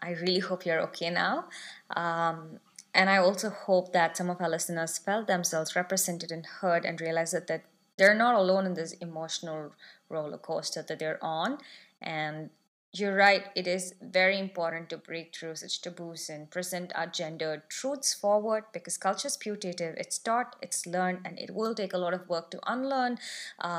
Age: 20-39